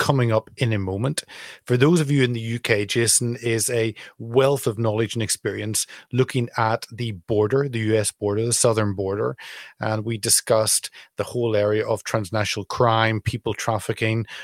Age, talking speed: 30-49, 170 wpm